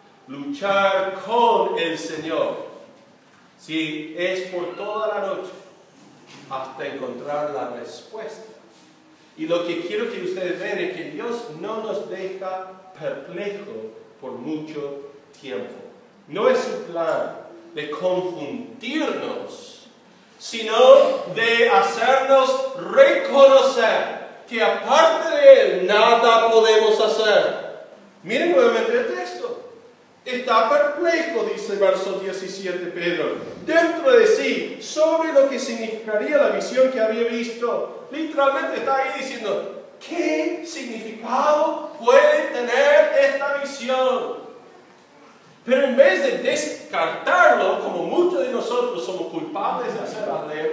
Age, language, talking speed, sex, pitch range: 40-59, Spanish, 115 wpm, male, 190-305 Hz